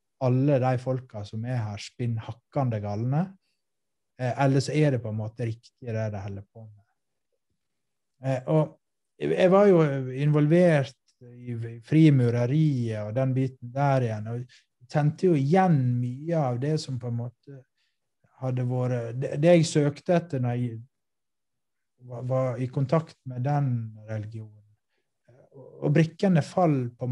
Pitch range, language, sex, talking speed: 115-135 Hz, Swedish, male, 130 wpm